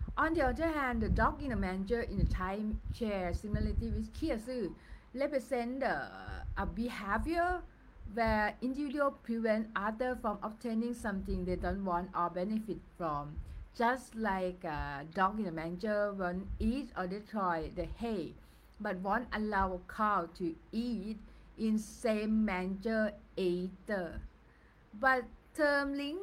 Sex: female